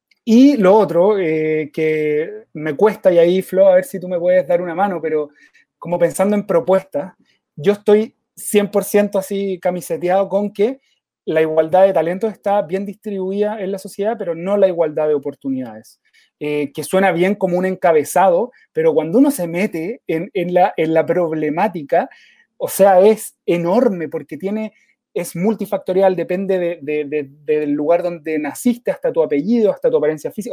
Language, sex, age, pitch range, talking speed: Spanish, male, 30-49, 160-205 Hz, 175 wpm